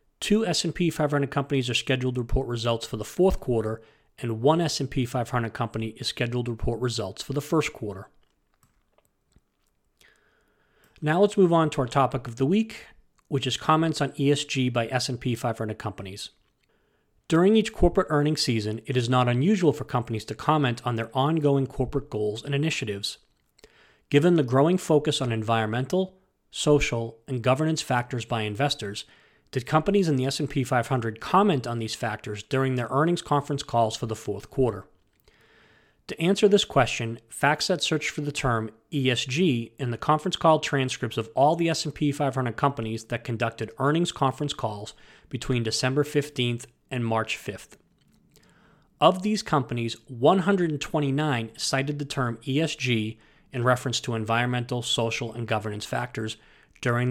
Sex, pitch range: male, 115-150 Hz